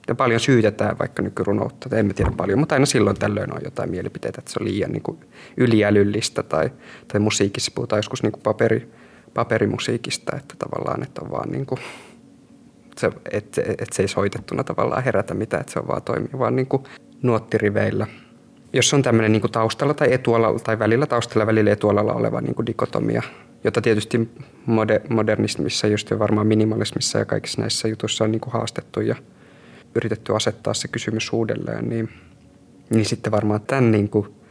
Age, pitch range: 20-39, 105-120 Hz